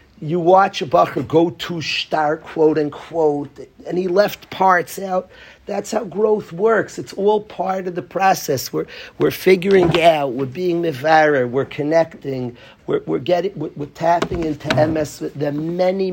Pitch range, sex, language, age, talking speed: 135-175 Hz, male, English, 40-59, 160 wpm